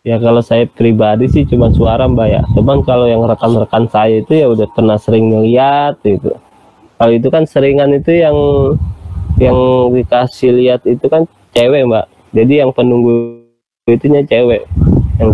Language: Indonesian